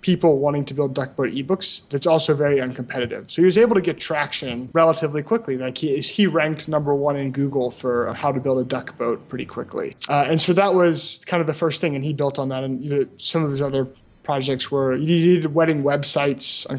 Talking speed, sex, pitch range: 235 wpm, male, 130-150 Hz